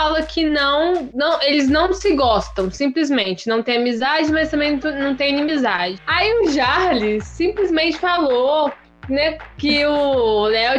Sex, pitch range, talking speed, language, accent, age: female, 240-305 Hz, 140 wpm, Portuguese, Brazilian, 10-29